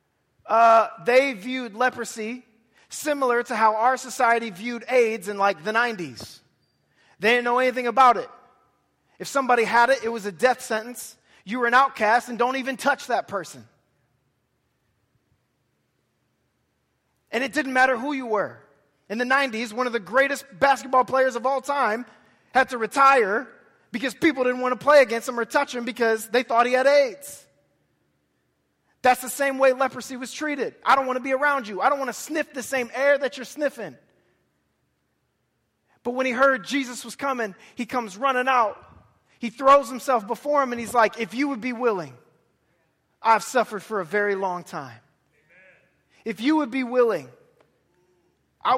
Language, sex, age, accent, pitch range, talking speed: English, male, 30-49, American, 210-260 Hz, 175 wpm